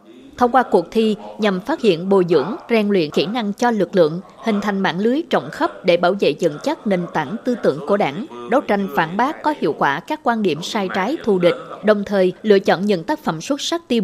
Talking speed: 245 wpm